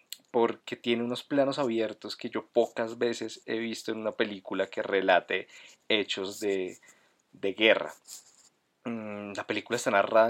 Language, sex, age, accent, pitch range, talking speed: Spanish, male, 20-39, Colombian, 100-120 Hz, 140 wpm